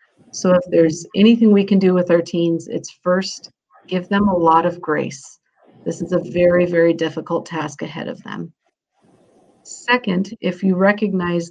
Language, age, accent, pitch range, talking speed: English, 40-59, American, 170-195 Hz, 165 wpm